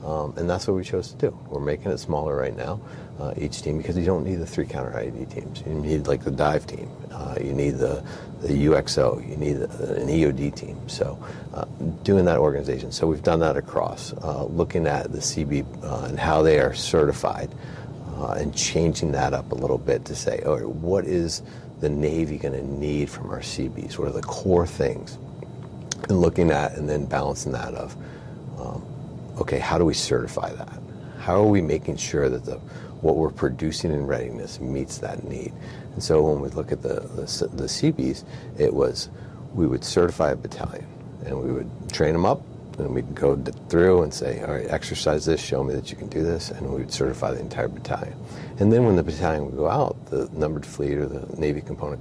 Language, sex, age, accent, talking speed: English, male, 40-59, American, 210 wpm